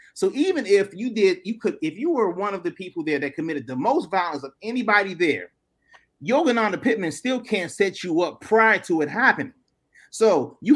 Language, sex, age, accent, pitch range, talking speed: English, male, 30-49, American, 175-240 Hz, 200 wpm